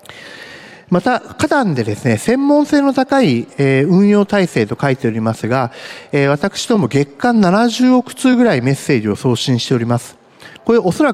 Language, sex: Japanese, male